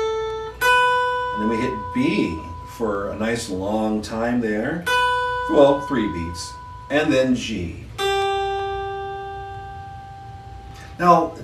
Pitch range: 110-150 Hz